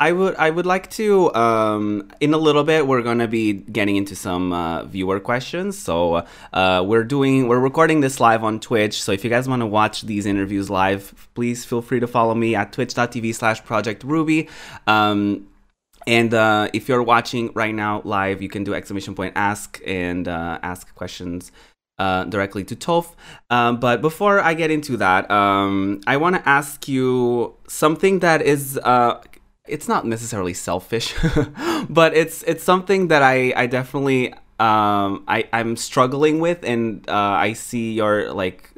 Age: 20-39